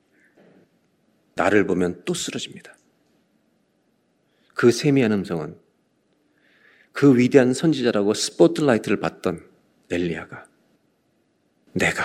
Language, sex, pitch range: Korean, male, 105-160 Hz